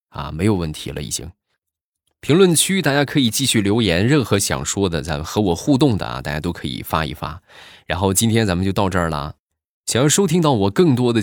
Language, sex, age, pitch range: Chinese, male, 20-39, 85-120 Hz